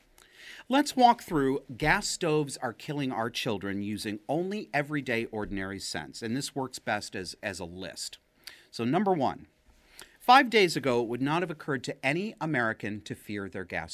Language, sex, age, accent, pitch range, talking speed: English, male, 40-59, American, 105-155 Hz, 170 wpm